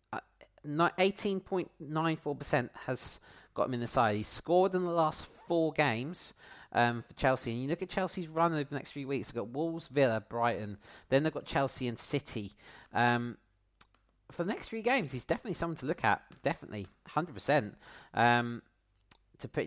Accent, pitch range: British, 115-160 Hz